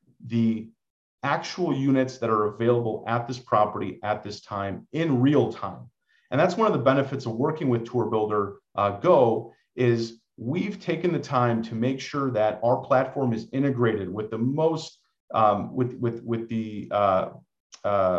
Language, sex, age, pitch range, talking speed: English, male, 40-59, 115-140 Hz, 165 wpm